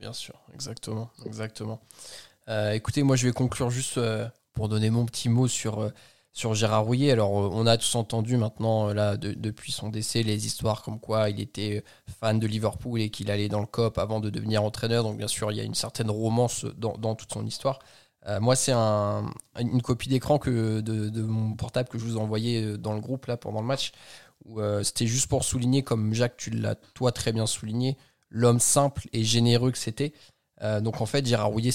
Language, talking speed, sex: French, 215 wpm, male